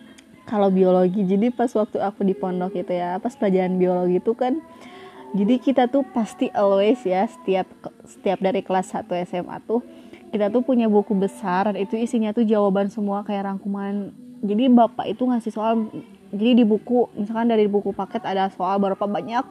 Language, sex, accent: Indonesian, female, native